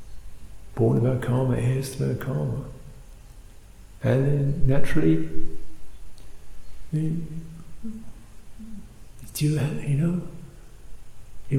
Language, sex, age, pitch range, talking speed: English, male, 60-79, 95-140 Hz, 70 wpm